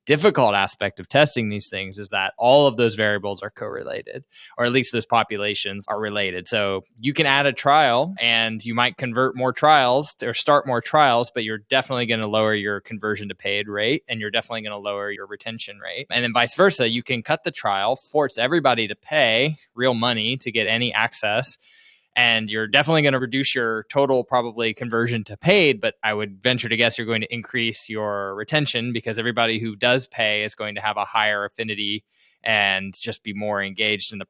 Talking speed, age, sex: 205 wpm, 20-39, male